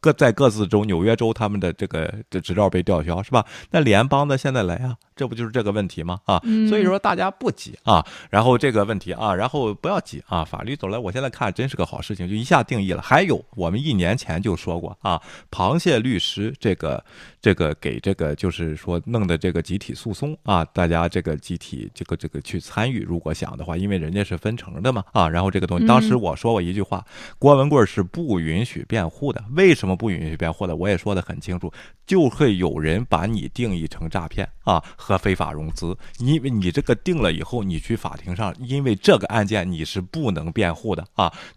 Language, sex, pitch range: Chinese, male, 90-125 Hz